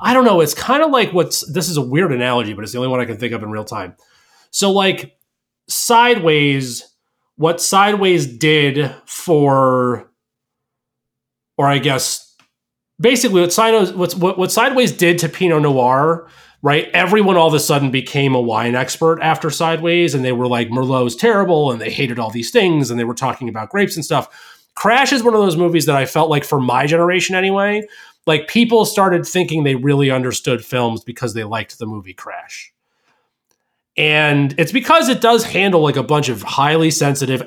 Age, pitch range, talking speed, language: 30-49, 130-185 Hz, 185 wpm, English